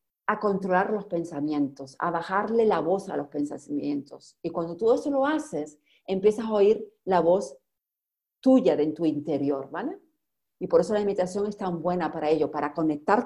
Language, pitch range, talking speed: Spanish, 180-275 Hz, 175 wpm